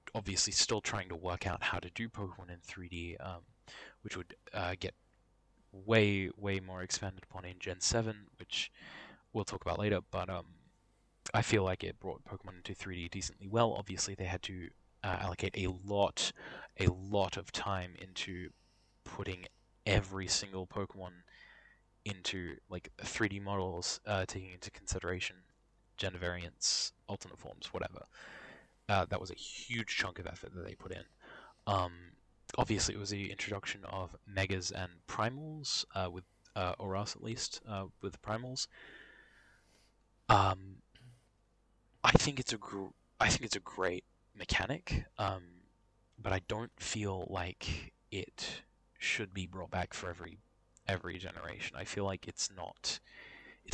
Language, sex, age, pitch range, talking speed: English, male, 20-39, 90-105 Hz, 150 wpm